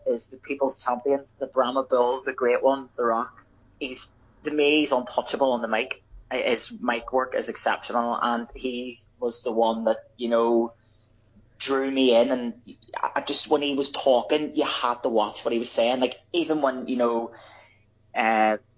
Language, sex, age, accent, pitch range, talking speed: English, male, 30-49, British, 110-135 Hz, 180 wpm